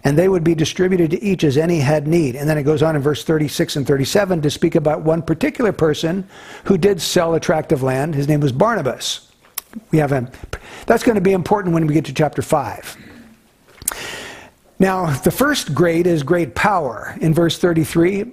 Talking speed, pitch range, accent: 195 wpm, 150-190 Hz, American